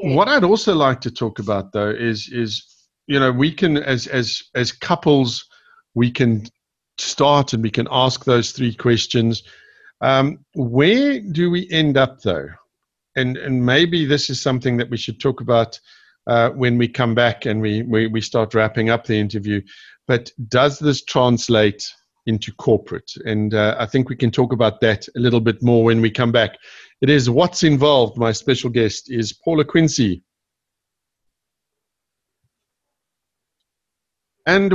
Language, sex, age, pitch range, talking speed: English, male, 50-69, 115-155 Hz, 160 wpm